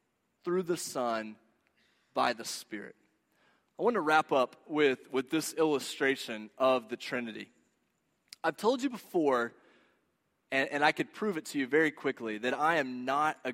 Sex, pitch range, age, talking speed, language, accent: male, 135-180 Hz, 30-49, 165 wpm, English, American